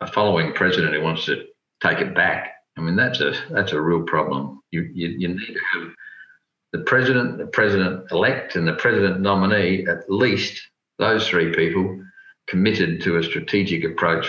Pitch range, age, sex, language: 90-115 Hz, 50-69, male, English